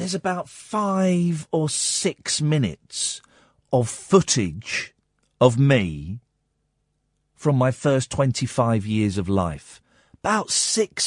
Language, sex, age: English, male, 40-59